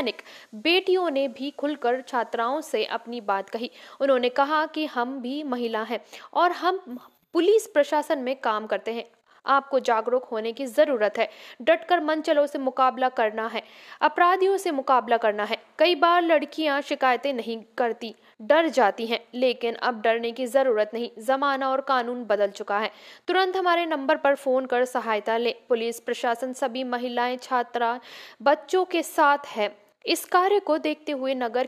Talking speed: 115 wpm